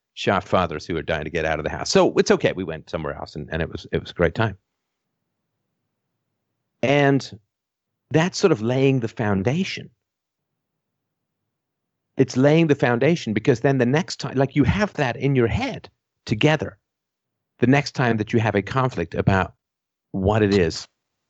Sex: male